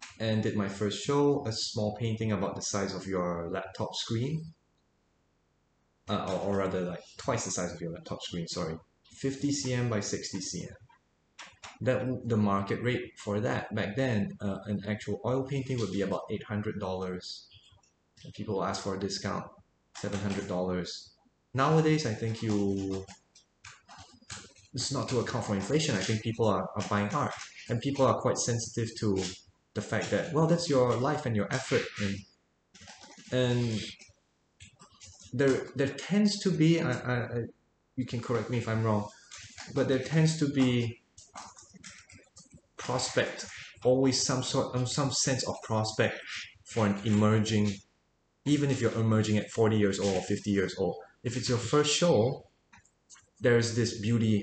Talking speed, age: 155 wpm, 20-39